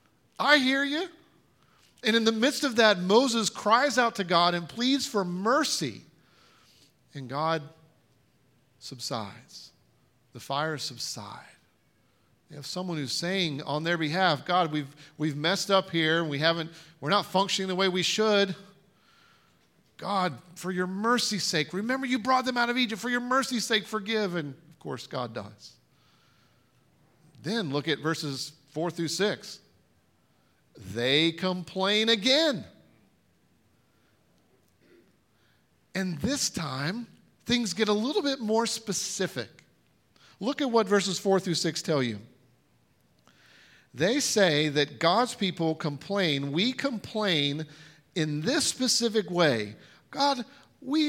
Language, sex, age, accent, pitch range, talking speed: English, male, 40-59, American, 150-225 Hz, 130 wpm